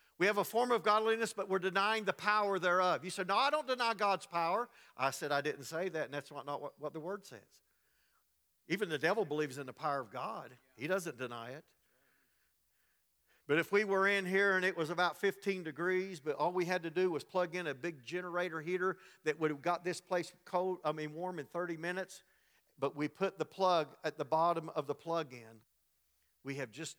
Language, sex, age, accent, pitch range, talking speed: English, male, 50-69, American, 130-180 Hz, 225 wpm